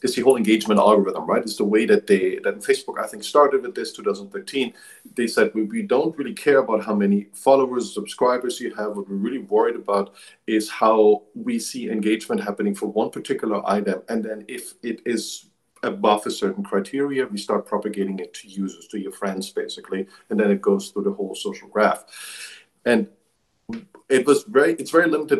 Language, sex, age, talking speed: English, male, 50-69, 195 wpm